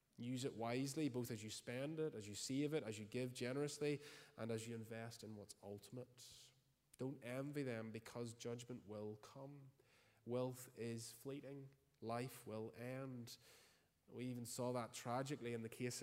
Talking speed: 165 wpm